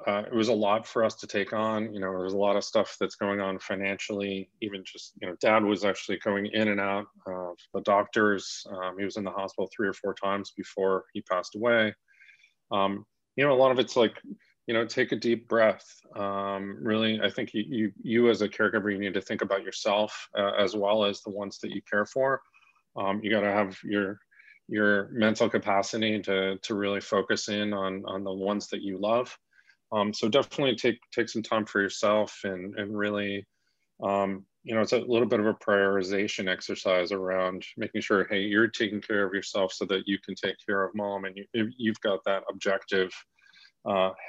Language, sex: English, male